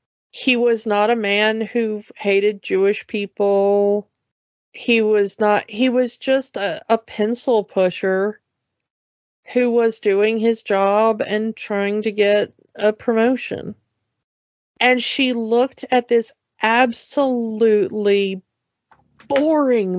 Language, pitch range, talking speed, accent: English, 205-255 Hz, 110 wpm, American